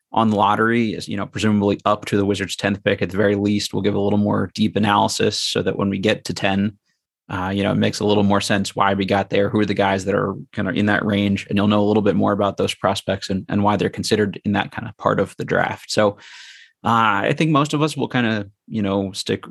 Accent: American